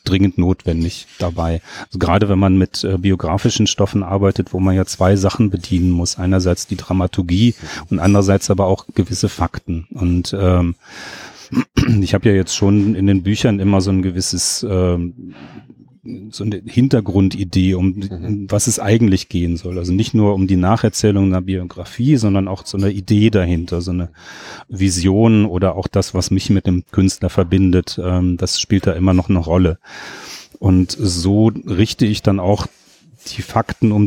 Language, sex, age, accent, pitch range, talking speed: German, male, 30-49, German, 95-105 Hz, 165 wpm